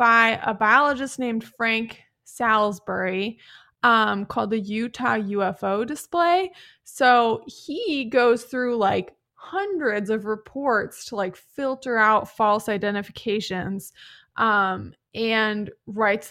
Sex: female